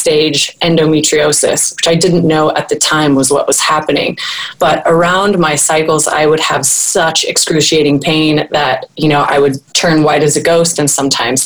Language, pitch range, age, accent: English, 150-175 Hz, 20-39, American